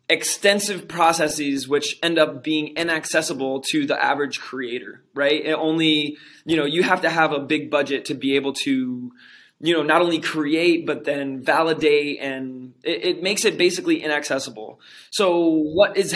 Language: English